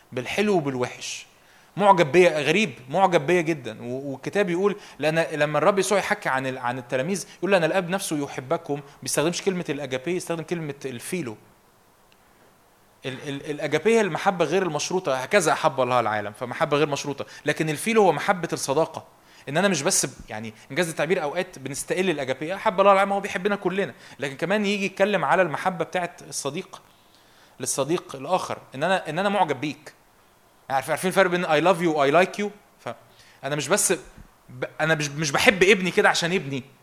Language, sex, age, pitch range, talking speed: Arabic, male, 20-39, 140-195 Hz, 165 wpm